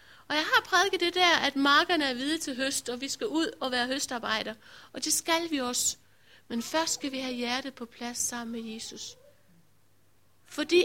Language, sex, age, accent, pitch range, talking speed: Danish, female, 60-79, native, 250-325 Hz, 200 wpm